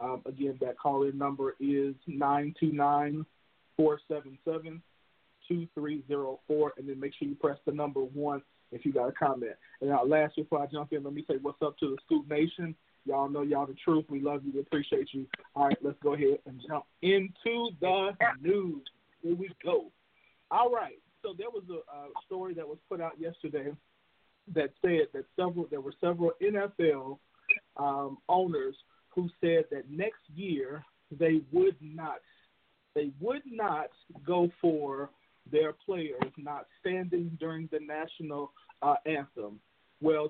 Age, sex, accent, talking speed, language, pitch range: 40-59, male, American, 175 wpm, English, 145-180 Hz